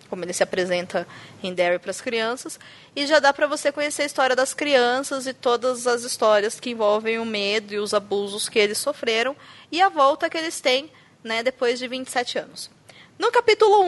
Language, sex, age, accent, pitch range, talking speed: Portuguese, female, 20-39, Brazilian, 230-305 Hz, 200 wpm